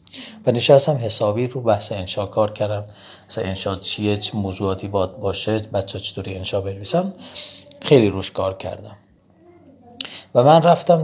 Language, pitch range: Persian, 100-120 Hz